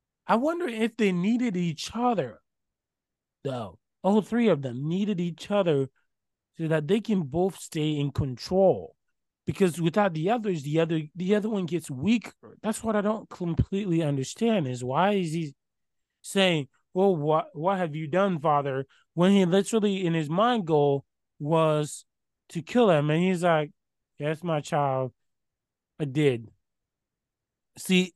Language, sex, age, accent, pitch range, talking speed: English, male, 20-39, American, 140-190 Hz, 155 wpm